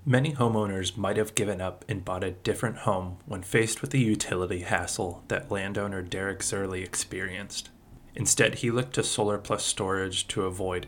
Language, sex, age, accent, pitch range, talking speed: English, male, 20-39, American, 95-120 Hz, 170 wpm